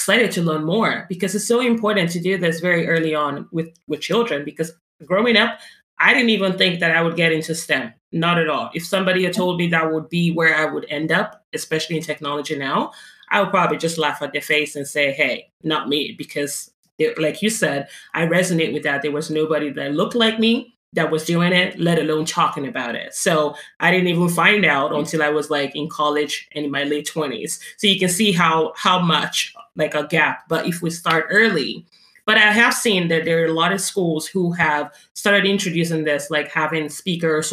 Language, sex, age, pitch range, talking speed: English, female, 30-49, 155-185 Hz, 220 wpm